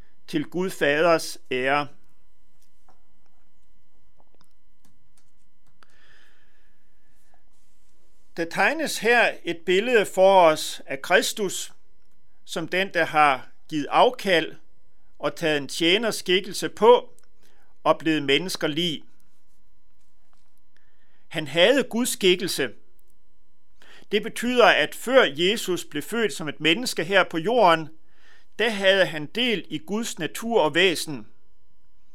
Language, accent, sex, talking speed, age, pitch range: Danish, native, male, 100 wpm, 60-79, 155-205 Hz